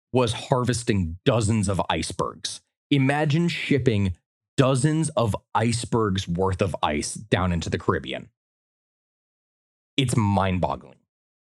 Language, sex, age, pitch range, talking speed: English, male, 30-49, 95-135 Hz, 100 wpm